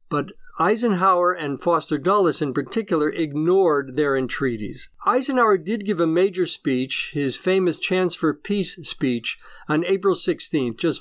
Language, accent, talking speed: English, American, 140 wpm